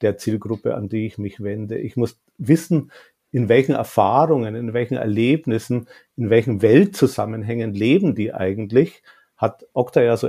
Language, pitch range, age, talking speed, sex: German, 110-135 Hz, 50-69, 150 wpm, male